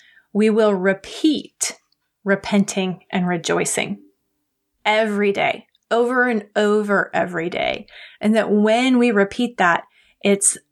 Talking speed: 110 wpm